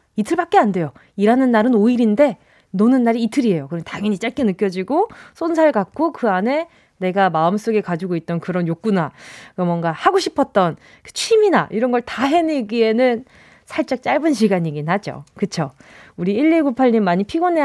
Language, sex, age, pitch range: Korean, female, 20-39, 190-295 Hz